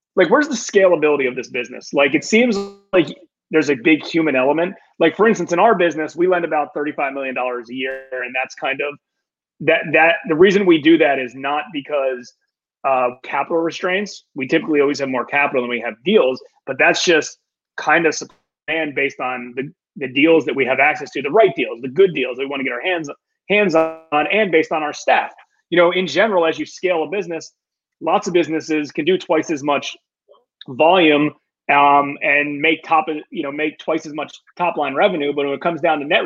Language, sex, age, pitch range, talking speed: English, male, 30-49, 140-180 Hz, 215 wpm